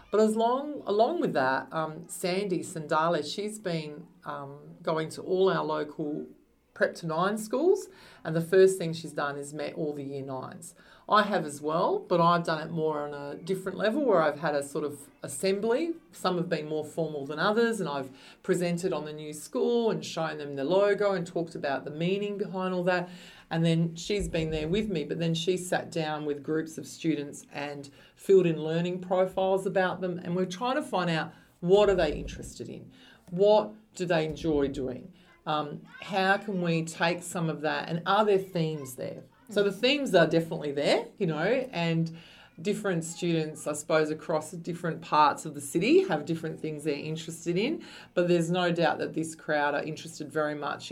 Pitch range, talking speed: 155-185 Hz, 195 wpm